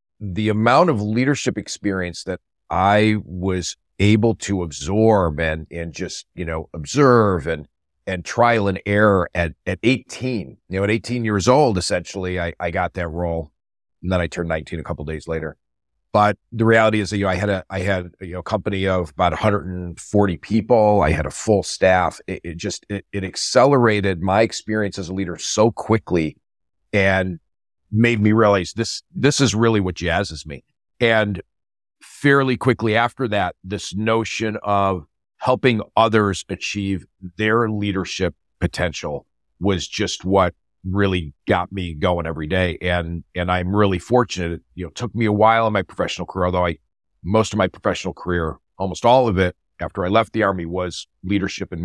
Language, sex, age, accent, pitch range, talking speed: English, male, 40-59, American, 90-110 Hz, 175 wpm